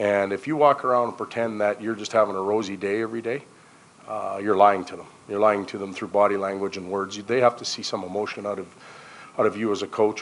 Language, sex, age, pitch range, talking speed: English, male, 40-59, 100-115 Hz, 260 wpm